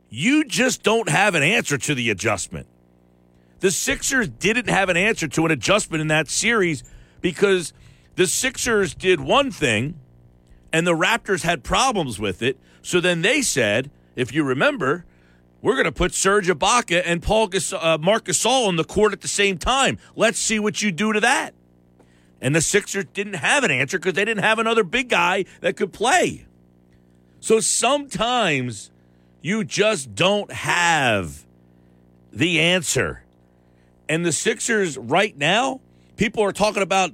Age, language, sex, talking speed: 50-69, English, male, 165 wpm